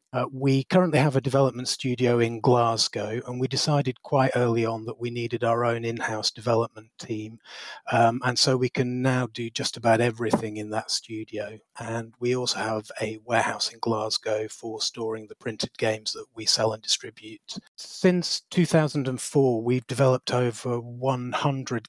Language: English